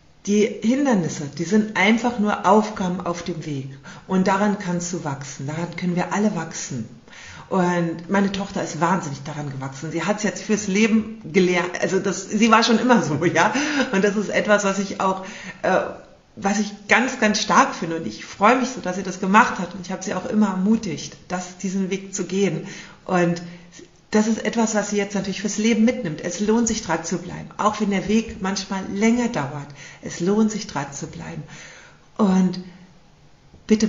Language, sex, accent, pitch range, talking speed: German, female, German, 175-215 Hz, 195 wpm